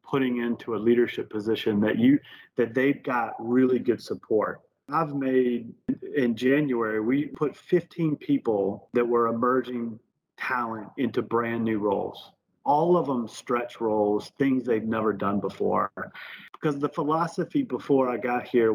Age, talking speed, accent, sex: 40-59, 145 wpm, American, male